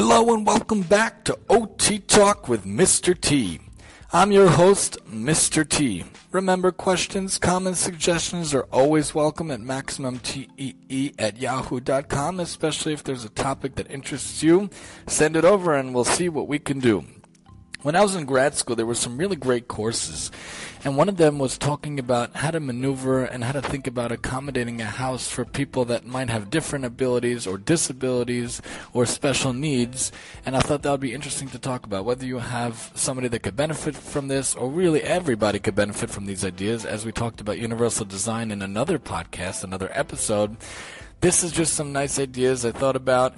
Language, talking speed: English, 185 wpm